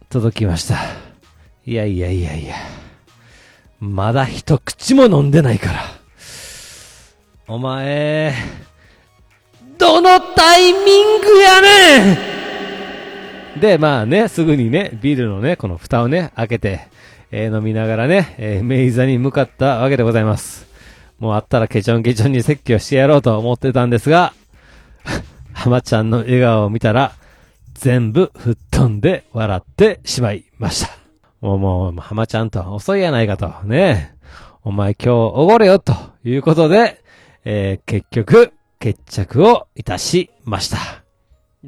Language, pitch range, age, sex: Japanese, 110-155 Hz, 40-59, male